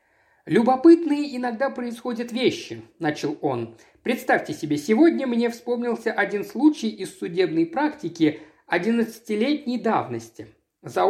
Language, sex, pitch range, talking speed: Russian, male, 155-245 Hz, 105 wpm